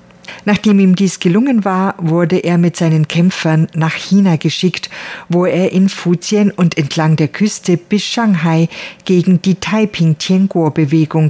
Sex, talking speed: female, 140 wpm